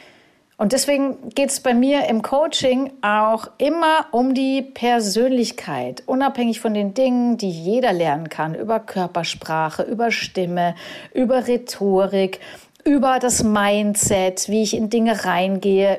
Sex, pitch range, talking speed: female, 180-245 Hz, 130 wpm